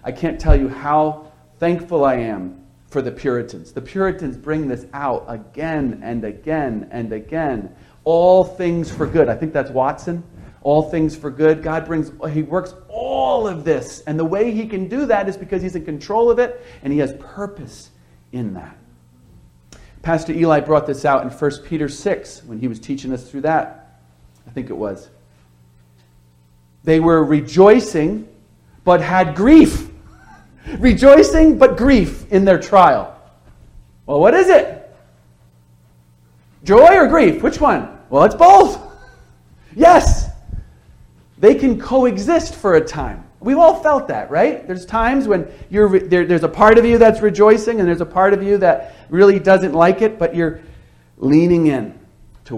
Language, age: English, 40-59